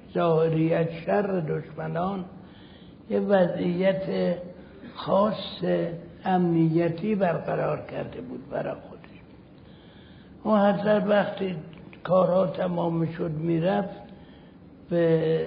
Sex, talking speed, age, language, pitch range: male, 80 wpm, 60-79, Persian, 160-195 Hz